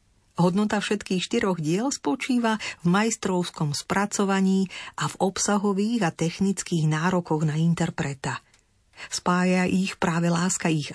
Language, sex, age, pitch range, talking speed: Slovak, female, 40-59, 155-195 Hz, 115 wpm